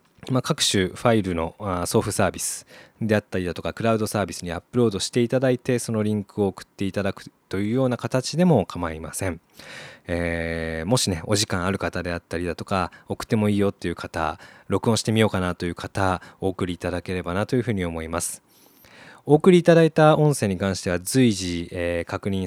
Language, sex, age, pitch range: Japanese, male, 20-39, 85-110 Hz